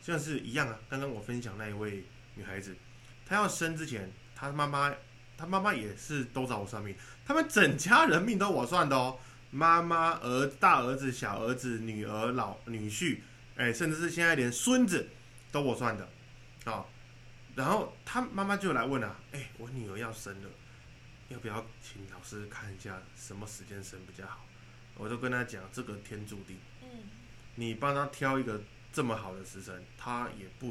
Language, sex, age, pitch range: Chinese, male, 20-39, 110-130 Hz